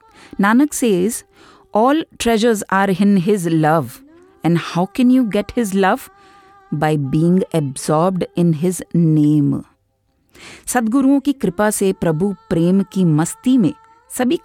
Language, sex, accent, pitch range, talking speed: English, female, Indian, 160-260 Hz, 130 wpm